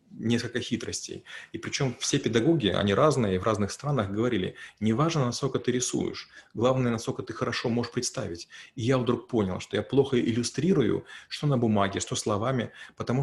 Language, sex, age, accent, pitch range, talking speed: Russian, male, 30-49, native, 105-130 Hz, 165 wpm